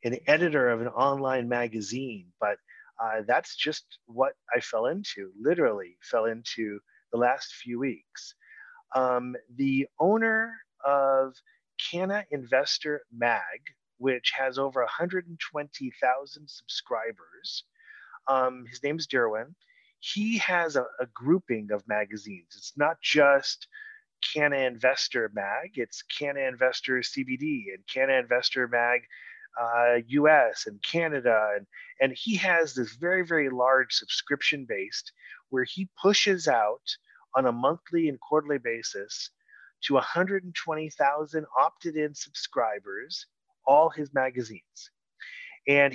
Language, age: English, 30-49